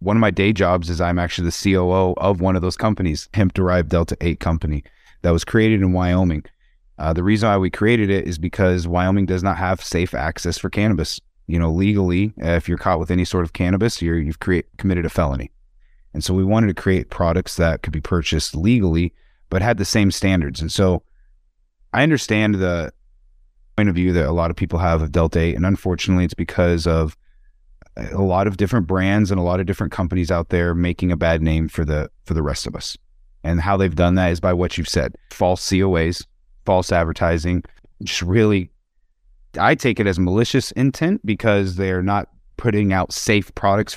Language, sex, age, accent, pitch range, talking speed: English, male, 30-49, American, 85-100 Hz, 205 wpm